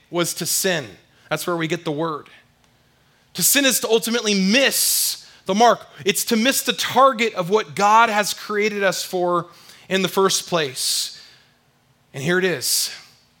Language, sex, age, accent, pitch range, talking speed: English, male, 30-49, American, 130-185 Hz, 165 wpm